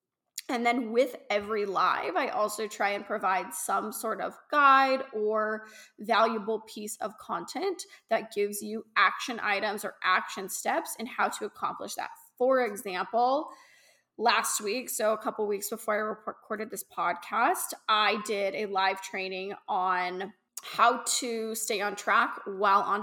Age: 20-39